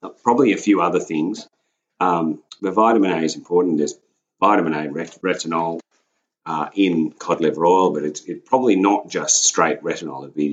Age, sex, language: 40-59, male, English